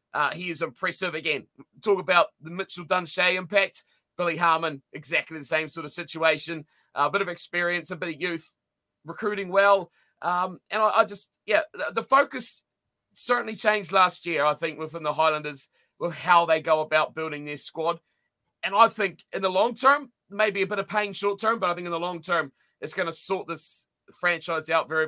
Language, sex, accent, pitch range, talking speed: English, male, Australian, 160-205 Hz, 200 wpm